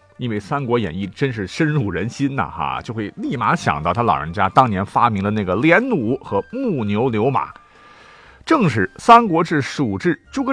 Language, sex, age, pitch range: Chinese, male, 50-69, 105-165 Hz